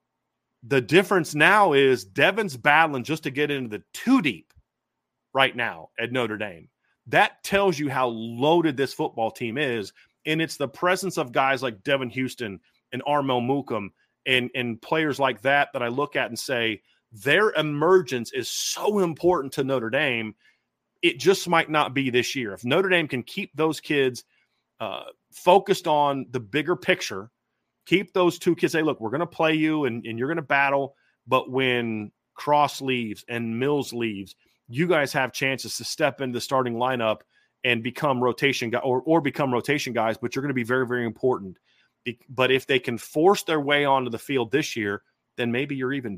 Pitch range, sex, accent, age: 120-155 Hz, male, American, 30-49